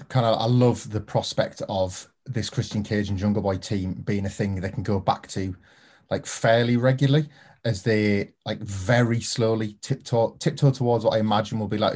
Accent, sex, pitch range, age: British, male, 105-135 Hz, 20-39